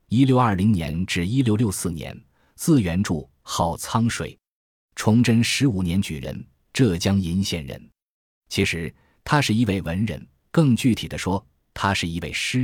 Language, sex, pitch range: Chinese, male, 90-120 Hz